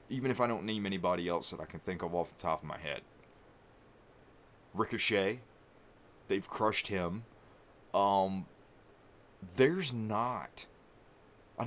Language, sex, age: English, male, 30-49